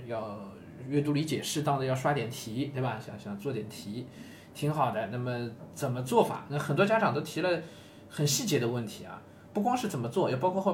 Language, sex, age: Chinese, male, 20-39